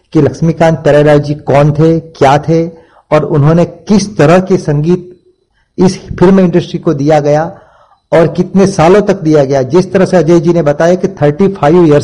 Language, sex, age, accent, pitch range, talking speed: Gujarati, male, 50-69, native, 150-180 Hz, 180 wpm